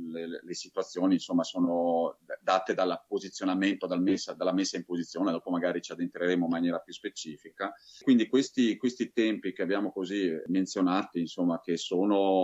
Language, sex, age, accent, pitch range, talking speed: Italian, male, 30-49, native, 85-100 Hz, 160 wpm